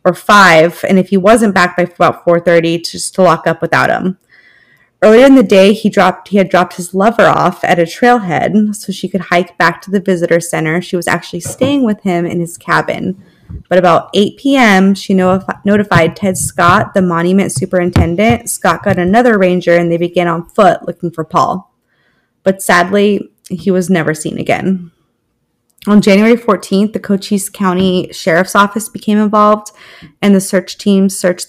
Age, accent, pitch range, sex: 20-39, American, 170-200 Hz, female